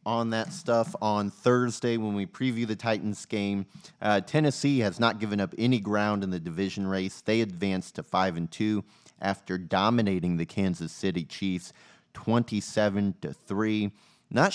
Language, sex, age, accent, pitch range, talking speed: English, male, 30-49, American, 90-115 Hz, 155 wpm